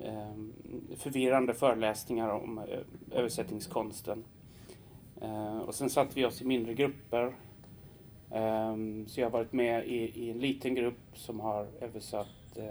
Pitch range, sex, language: 110-130 Hz, male, Swedish